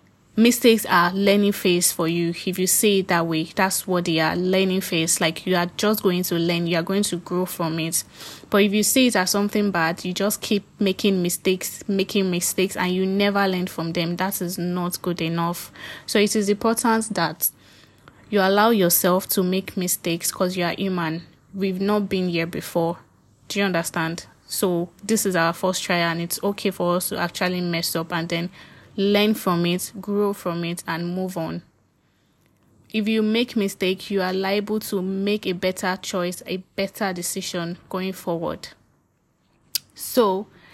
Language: English